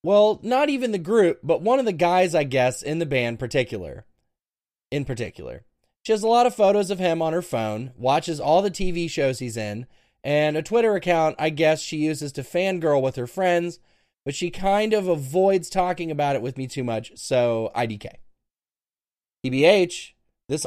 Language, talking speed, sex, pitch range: English, 190 wpm, male, 145-205 Hz